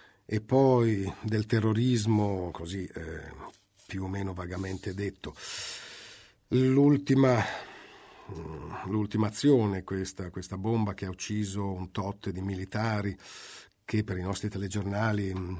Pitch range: 100-125 Hz